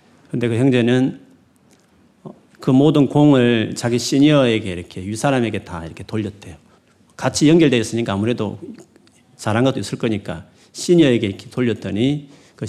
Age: 40-59